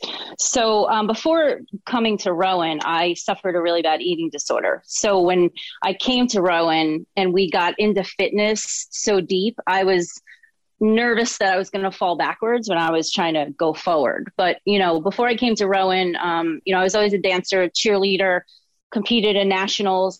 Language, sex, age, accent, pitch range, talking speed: English, female, 30-49, American, 175-215 Hz, 185 wpm